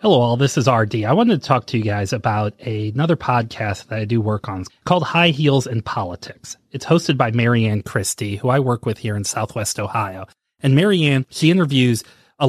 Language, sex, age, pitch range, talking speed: English, male, 30-49, 110-135 Hz, 205 wpm